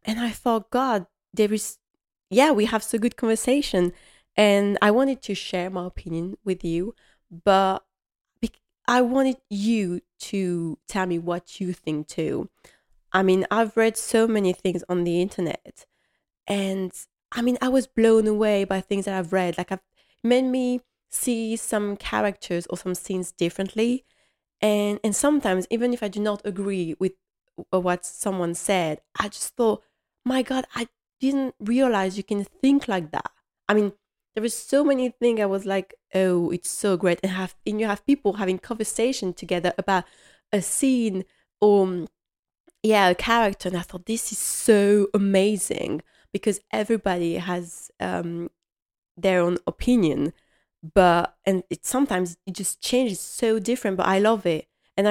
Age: 20-39